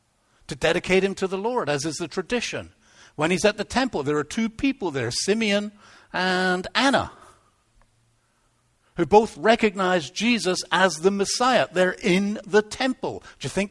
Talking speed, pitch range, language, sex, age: 160 wpm, 120-190 Hz, English, male, 60-79